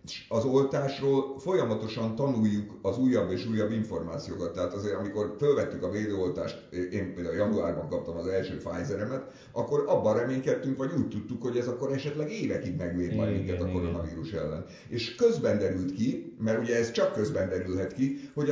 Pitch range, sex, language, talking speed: 90-130 Hz, male, Hungarian, 165 wpm